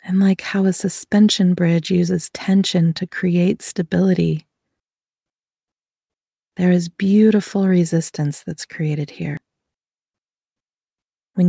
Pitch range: 165-190 Hz